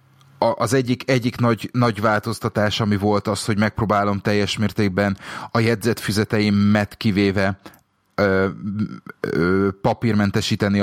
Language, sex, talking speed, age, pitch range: Hungarian, male, 105 wpm, 30-49, 100-115 Hz